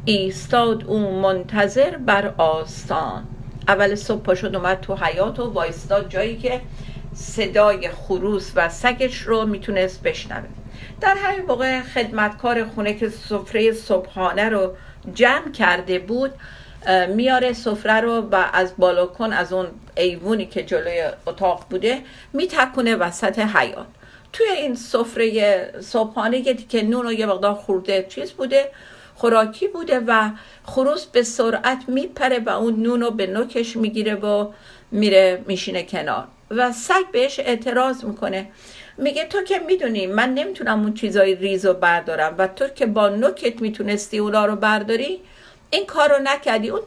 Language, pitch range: Persian, 195-250 Hz